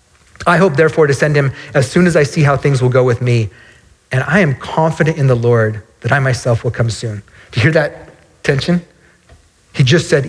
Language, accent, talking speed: English, American, 220 wpm